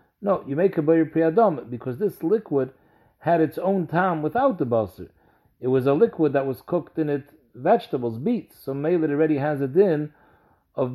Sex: male